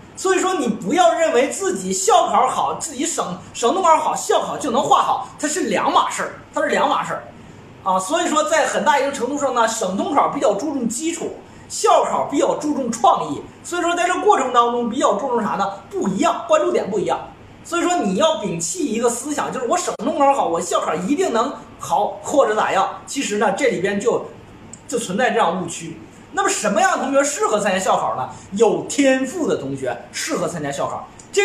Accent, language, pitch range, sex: native, Chinese, 215-345 Hz, male